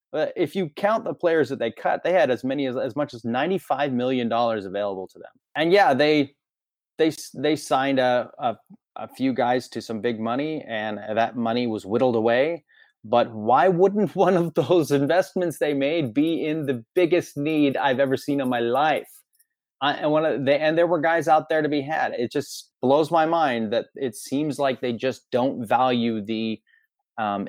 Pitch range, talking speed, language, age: 115-155 Hz, 200 wpm, English, 30-49